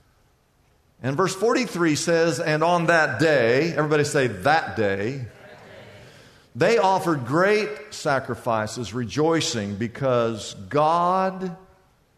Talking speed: 95 wpm